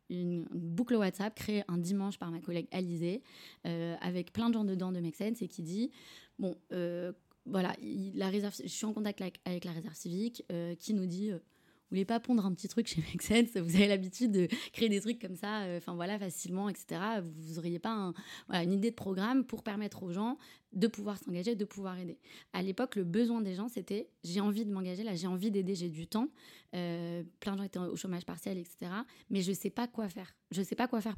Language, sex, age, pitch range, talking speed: French, female, 20-39, 180-220 Hz, 235 wpm